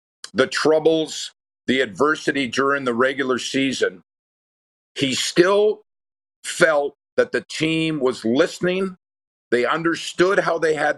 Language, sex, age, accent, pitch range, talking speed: English, male, 50-69, American, 125-160 Hz, 115 wpm